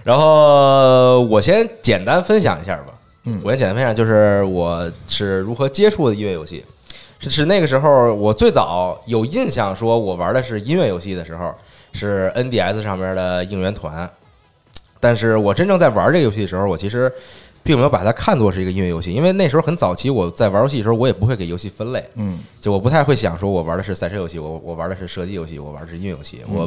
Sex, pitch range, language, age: male, 95-135 Hz, Chinese, 20-39